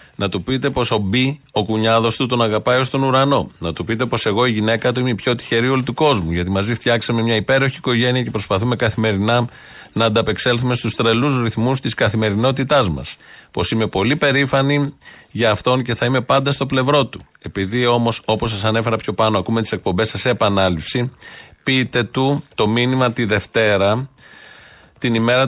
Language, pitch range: Greek, 110-135 Hz